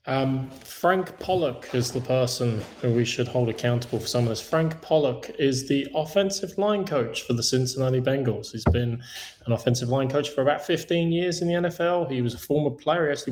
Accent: British